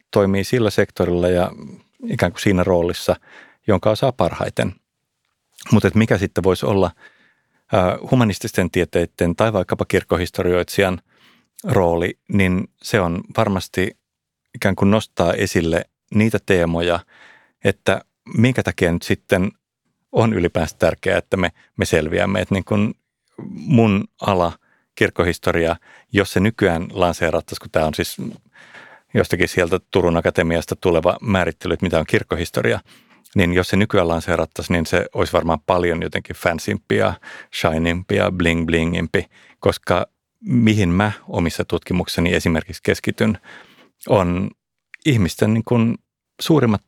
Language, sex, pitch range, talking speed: Finnish, male, 85-105 Hz, 120 wpm